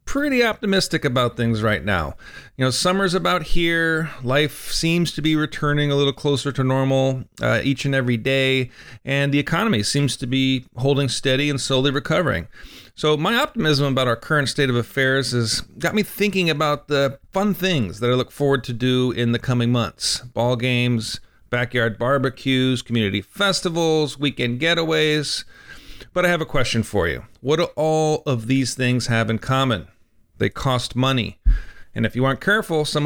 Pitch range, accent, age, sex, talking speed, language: 120-155 Hz, American, 40-59, male, 175 wpm, English